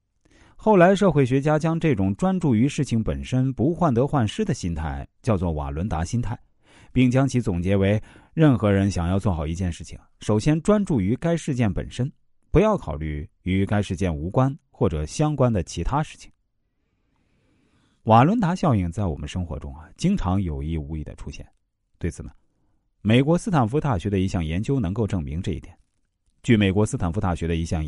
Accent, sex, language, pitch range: native, male, Chinese, 85-130 Hz